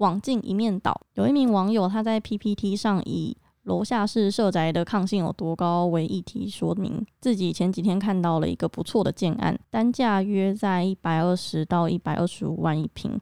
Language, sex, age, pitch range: Chinese, female, 20-39, 170-210 Hz